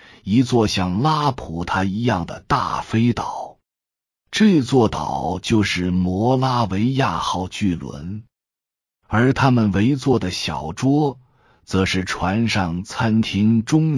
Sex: male